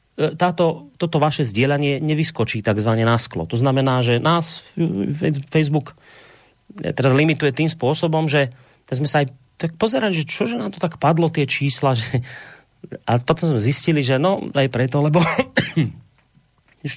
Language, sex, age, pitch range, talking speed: Slovak, male, 30-49, 115-155 Hz, 150 wpm